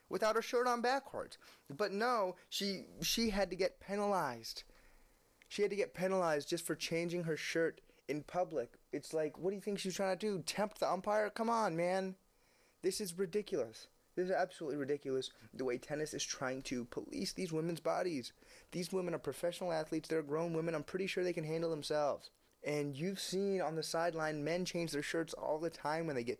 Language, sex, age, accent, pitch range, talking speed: English, male, 20-39, American, 140-185 Hz, 200 wpm